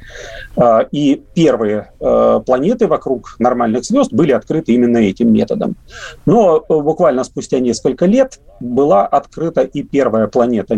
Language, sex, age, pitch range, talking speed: Russian, male, 40-59, 115-175 Hz, 115 wpm